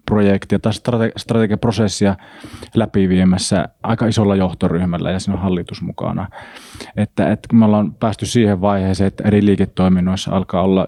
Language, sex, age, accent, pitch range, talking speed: Finnish, male, 30-49, native, 95-110 Hz, 145 wpm